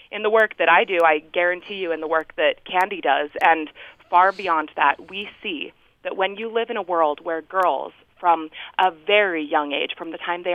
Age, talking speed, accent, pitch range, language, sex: 20-39, 220 wpm, American, 165-220 Hz, English, female